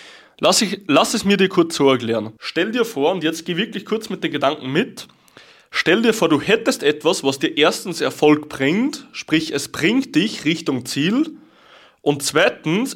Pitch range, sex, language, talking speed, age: 135-205 Hz, male, German, 185 wpm, 20-39